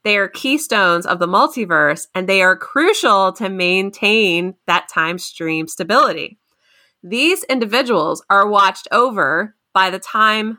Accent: American